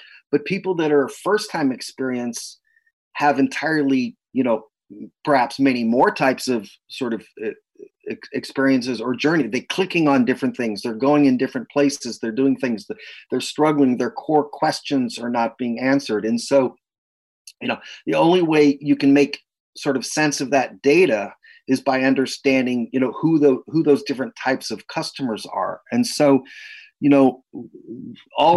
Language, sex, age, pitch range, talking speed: English, male, 30-49, 115-140 Hz, 170 wpm